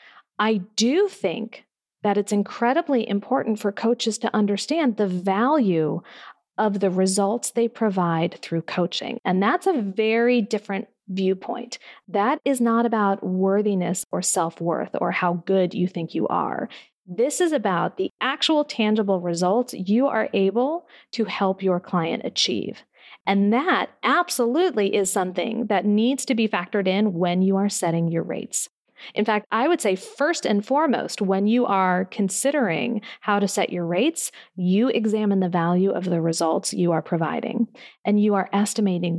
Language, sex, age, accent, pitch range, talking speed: English, female, 40-59, American, 190-245 Hz, 160 wpm